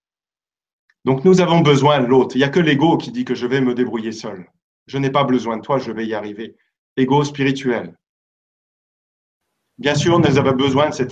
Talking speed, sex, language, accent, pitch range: 205 wpm, male, French, French, 115-135 Hz